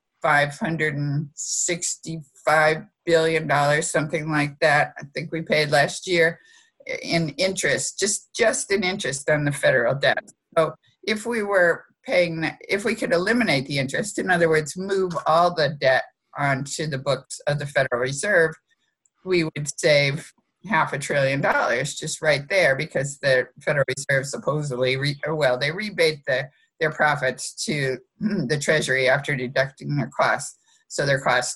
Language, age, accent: English, 50-69, American